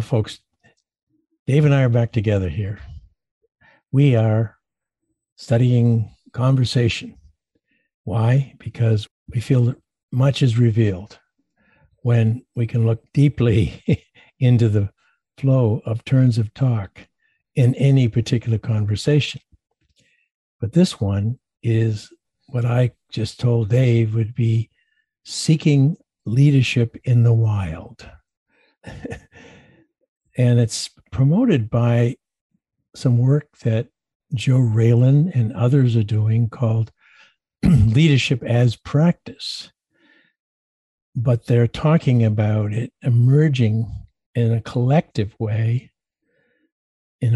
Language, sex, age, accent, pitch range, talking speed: English, male, 60-79, American, 110-135 Hz, 100 wpm